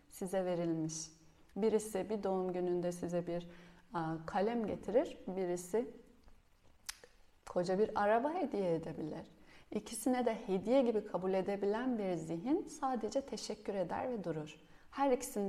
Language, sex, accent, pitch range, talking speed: Turkish, female, native, 170-230 Hz, 120 wpm